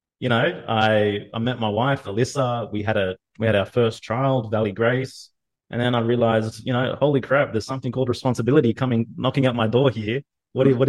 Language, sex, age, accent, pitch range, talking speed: English, male, 20-39, Australian, 110-125 Hz, 215 wpm